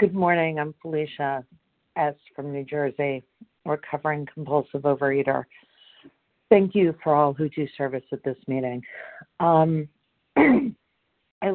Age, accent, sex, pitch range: 50-69, American, female, 145-180 Hz